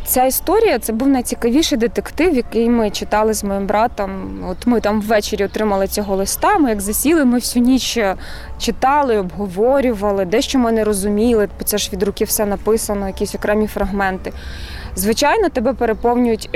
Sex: female